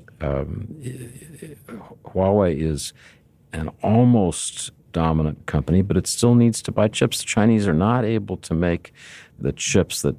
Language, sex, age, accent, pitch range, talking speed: English, male, 50-69, American, 70-95 Hz, 140 wpm